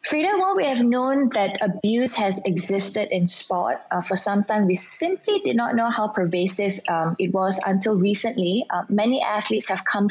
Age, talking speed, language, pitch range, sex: 20-39, 190 wpm, English, 185-235 Hz, female